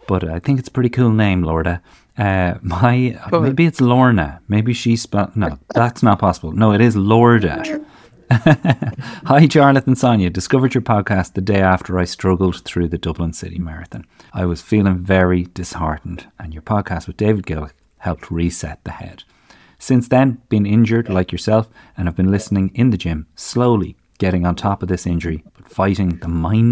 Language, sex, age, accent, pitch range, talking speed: English, male, 30-49, Irish, 90-115 Hz, 180 wpm